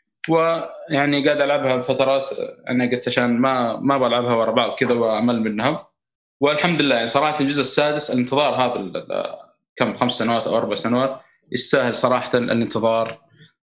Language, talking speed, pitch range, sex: Arabic, 140 wpm, 115-140 Hz, male